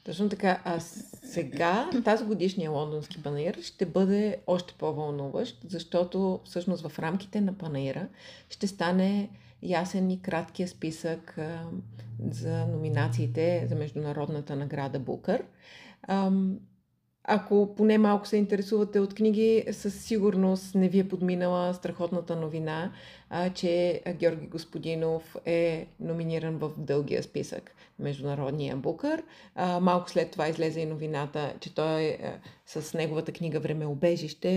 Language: Bulgarian